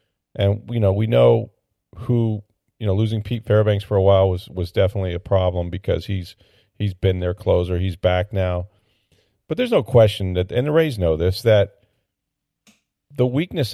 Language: English